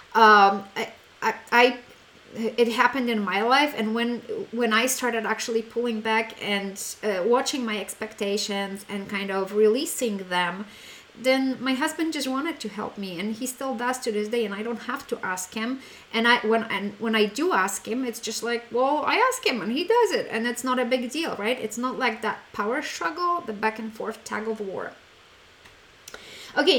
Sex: female